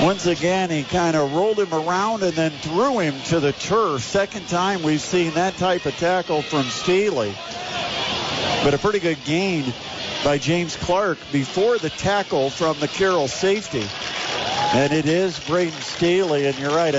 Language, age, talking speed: English, 50-69, 165 wpm